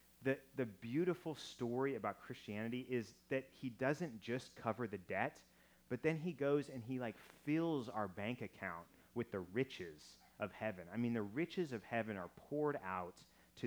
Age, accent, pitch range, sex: 30-49, American, 100-135 Hz, male